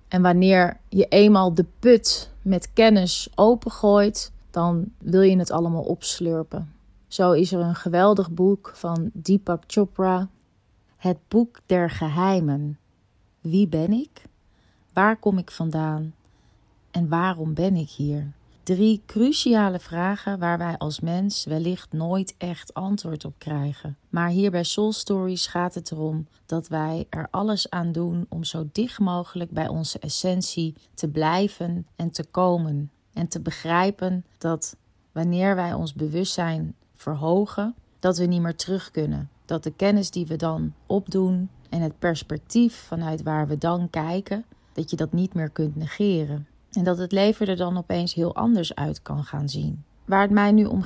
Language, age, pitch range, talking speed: Dutch, 30-49, 155-190 Hz, 160 wpm